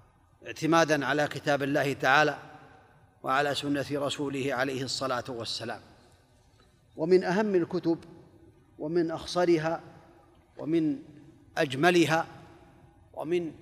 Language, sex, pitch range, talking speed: Arabic, male, 130-170 Hz, 85 wpm